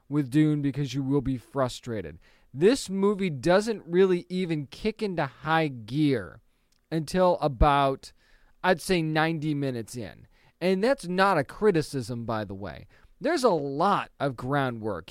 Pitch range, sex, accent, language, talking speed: 145-185 Hz, male, American, English, 145 wpm